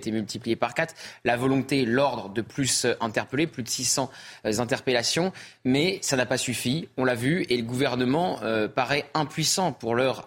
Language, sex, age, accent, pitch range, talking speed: French, male, 20-39, French, 120-135 Hz, 180 wpm